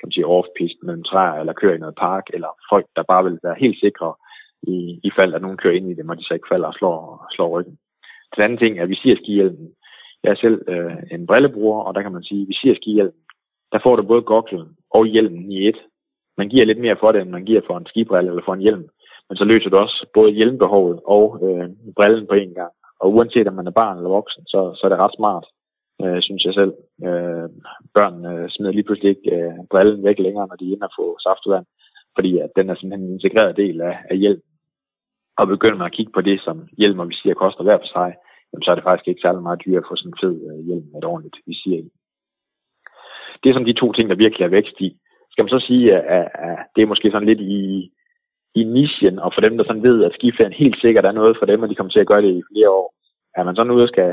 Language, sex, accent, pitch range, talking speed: Danish, male, native, 90-110 Hz, 250 wpm